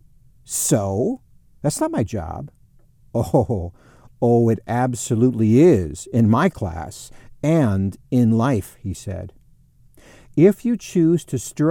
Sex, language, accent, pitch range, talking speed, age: male, English, American, 115-155 Hz, 125 wpm, 50-69